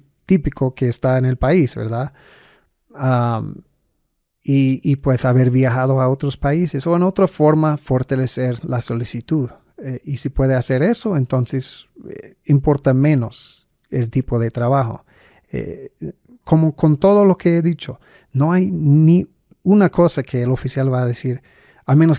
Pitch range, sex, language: 125-150 Hz, male, Spanish